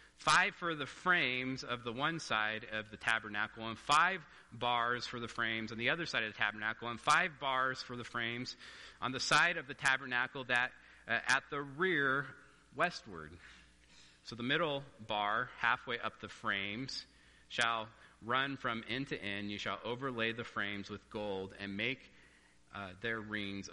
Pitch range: 100-120 Hz